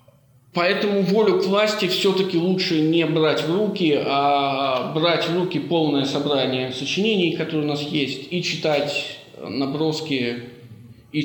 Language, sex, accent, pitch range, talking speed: Russian, male, native, 140-185 Hz, 135 wpm